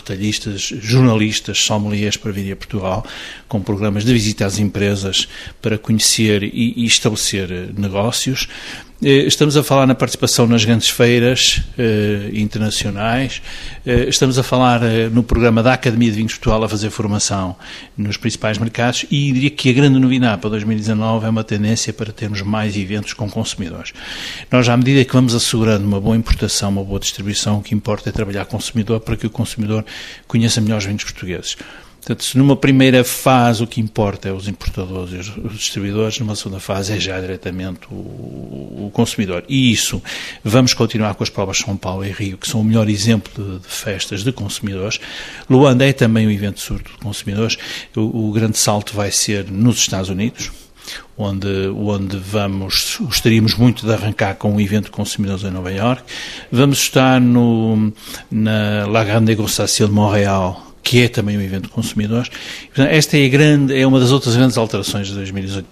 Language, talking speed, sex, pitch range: Portuguese, 180 wpm, male, 105-120 Hz